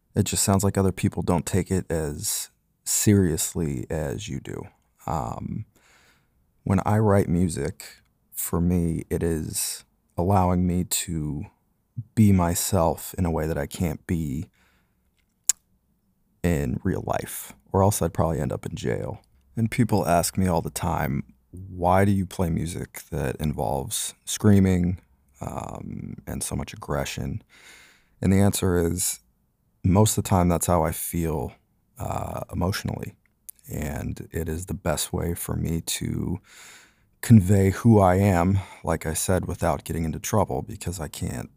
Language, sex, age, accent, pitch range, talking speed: English, male, 30-49, American, 80-100 Hz, 150 wpm